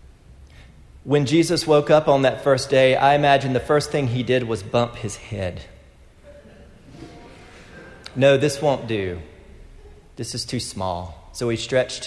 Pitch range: 95-130 Hz